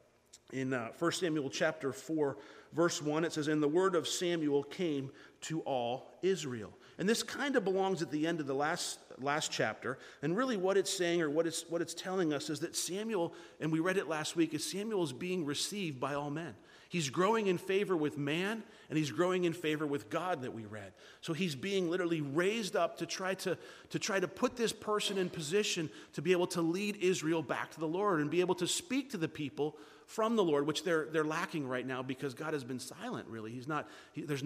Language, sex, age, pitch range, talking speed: English, male, 40-59, 145-185 Hz, 230 wpm